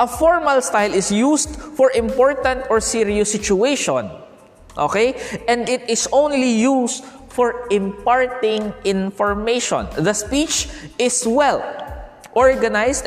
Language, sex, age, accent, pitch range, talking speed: Filipino, male, 20-39, native, 195-260 Hz, 110 wpm